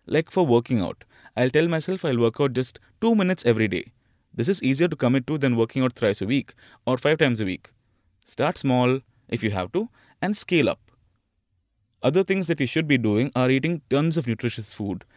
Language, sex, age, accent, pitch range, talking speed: English, male, 20-39, Indian, 115-150 Hz, 215 wpm